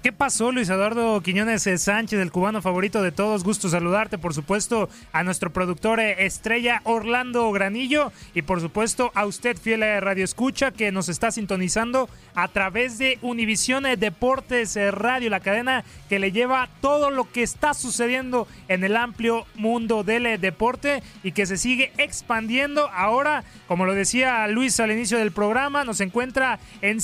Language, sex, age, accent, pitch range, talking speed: Spanish, male, 30-49, Mexican, 200-250 Hz, 160 wpm